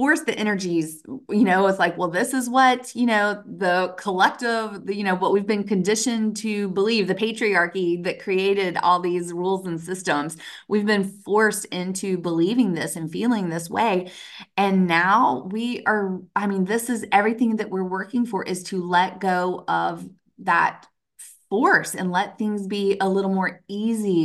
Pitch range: 175-210 Hz